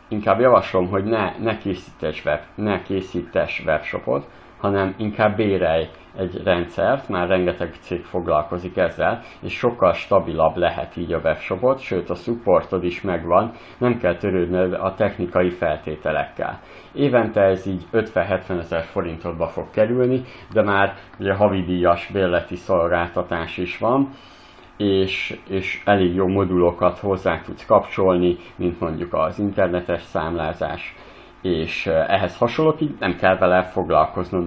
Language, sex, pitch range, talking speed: Hungarian, male, 90-100 Hz, 130 wpm